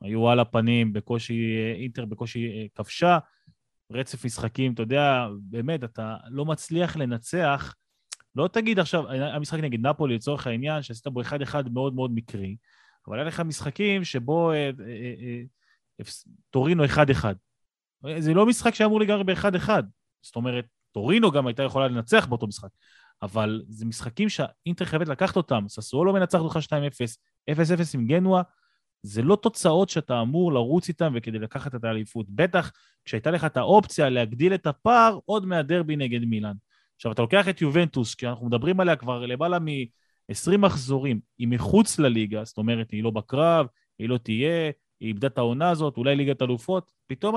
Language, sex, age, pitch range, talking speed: Hebrew, male, 30-49, 120-170 Hz, 165 wpm